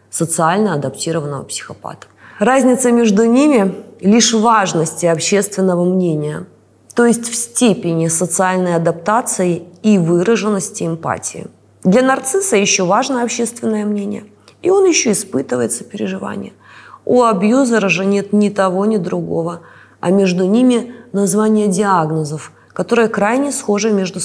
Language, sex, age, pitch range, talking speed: Russian, female, 20-39, 180-235 Hz, 120 wpm